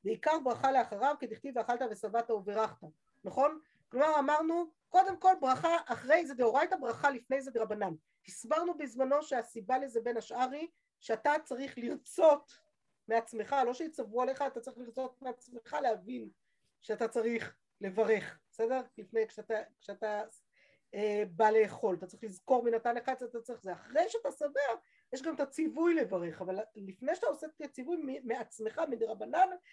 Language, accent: Hebrew, native